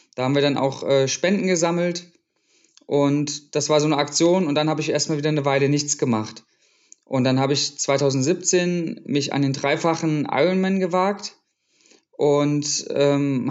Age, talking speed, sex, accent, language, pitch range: 20-39, 160 wpm, male, German, German, 140-170 Hz